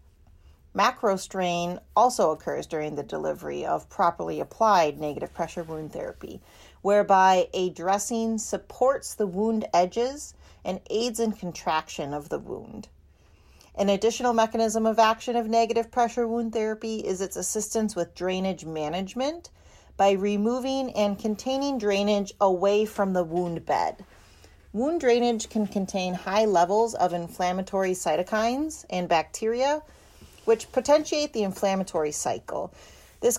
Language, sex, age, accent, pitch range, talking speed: English, female, 40-59, American, 180-230 Hz, 130 wpm